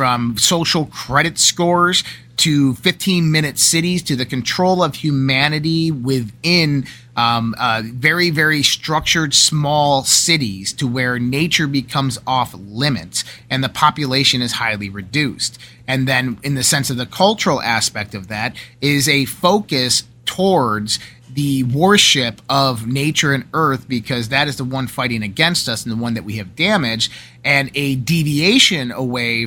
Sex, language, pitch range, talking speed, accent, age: male, English, 115-150 Hz, 145 wpm, American, 30-49